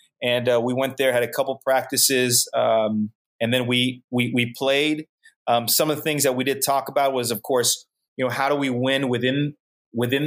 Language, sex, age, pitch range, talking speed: English, male, 30-49, 125-150 Hz, 215 wpm